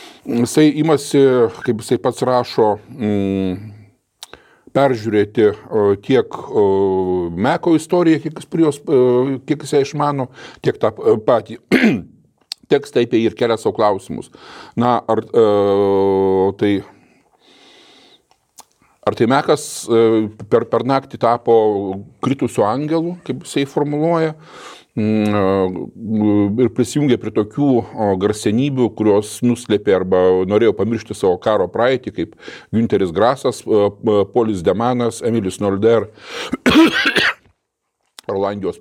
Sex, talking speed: male, 100 wpm